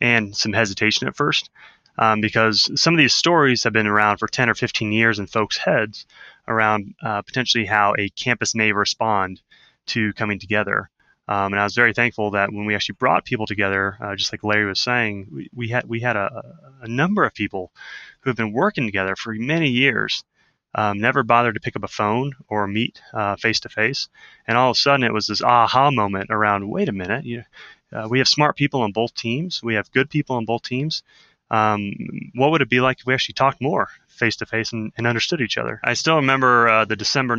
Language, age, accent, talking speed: English, 20-39, American, 215 wpm